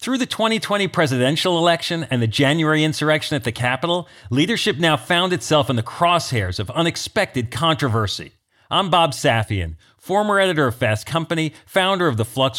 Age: 40-59